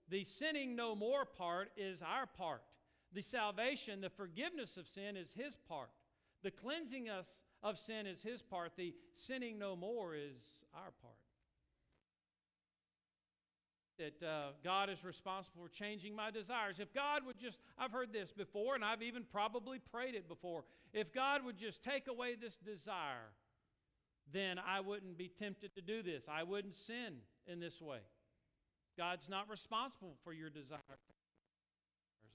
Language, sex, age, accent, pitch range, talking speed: English, male, 50-69, American, 160-220 Hz, 155 wpm